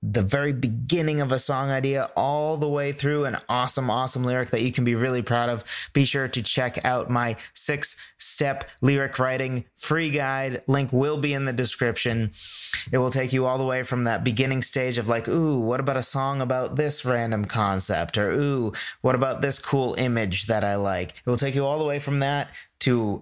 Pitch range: 115-140 Hz